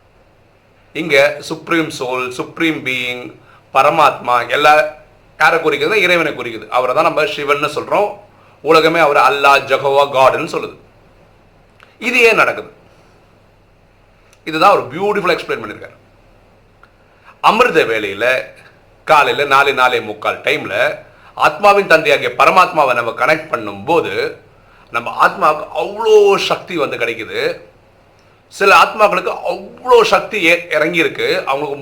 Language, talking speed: Tamil, 100 wpm